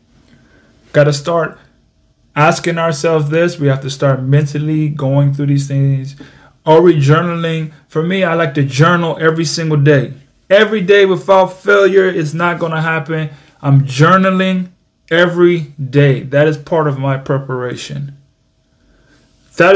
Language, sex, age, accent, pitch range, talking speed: English, male, 30-49, American, 140-175 Hz, 145 wpm